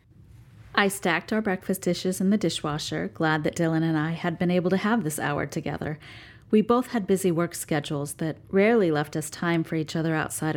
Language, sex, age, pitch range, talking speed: English, female, 30-49, 150-195 Hz, 205 wpm